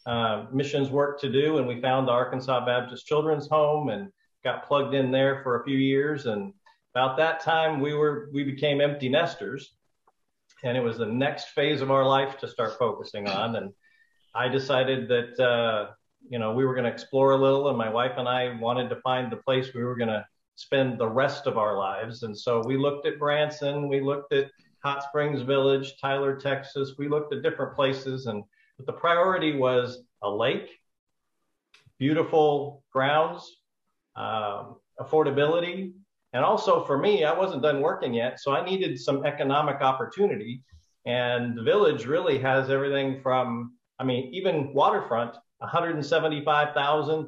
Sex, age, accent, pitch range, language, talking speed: male, 40-59, American, 125-150 Hz, English, 170 wpm